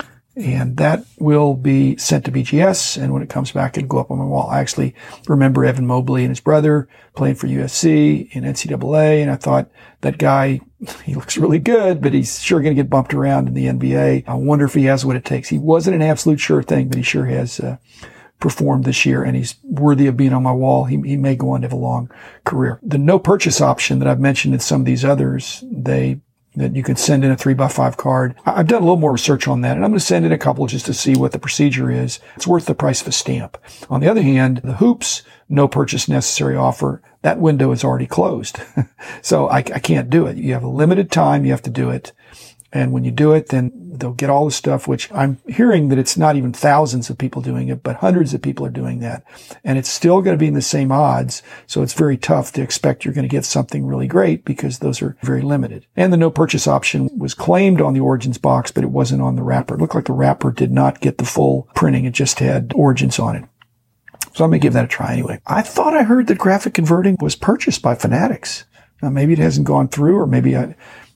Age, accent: 50-69, American